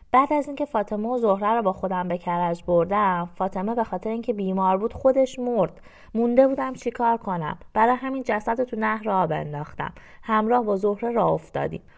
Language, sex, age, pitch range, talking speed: Persian, female, 20-39, 185-235 Hz, 185 wpm